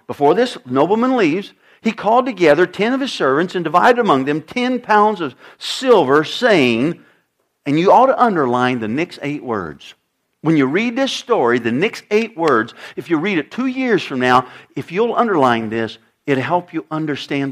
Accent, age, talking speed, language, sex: American, 50-69, 185 wpm, English, male